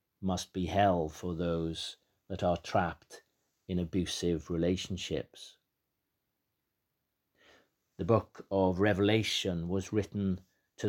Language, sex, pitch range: English, male, 90-100 Hz